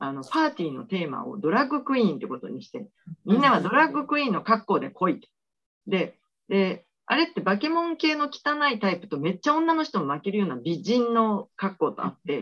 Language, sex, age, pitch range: Japanese, female, 40-59, 175-260 Hz